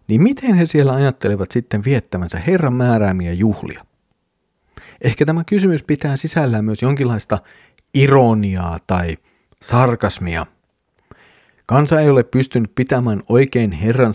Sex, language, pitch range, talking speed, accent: male, Finnish, 100-125 Hz, 110 wpm, native